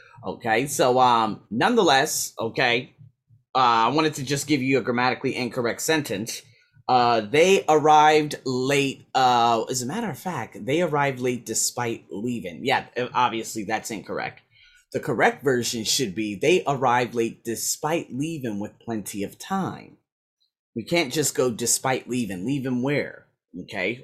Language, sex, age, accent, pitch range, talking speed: English, male, 30-49, American, 115-150 Hz, 145 wpm